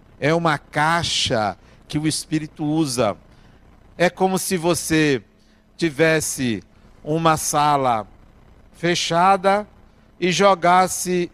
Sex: male